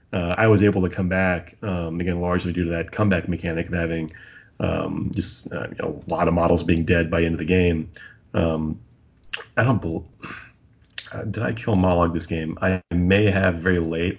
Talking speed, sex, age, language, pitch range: 210 wpm, male, 30-49, English, 85-95 Hz